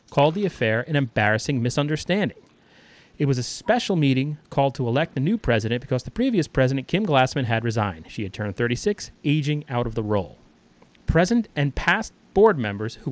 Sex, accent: male, American